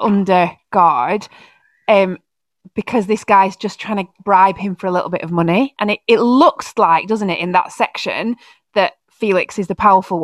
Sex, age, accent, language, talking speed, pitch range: female, 20-39, British, English, 190 wpm, 185-230 Hz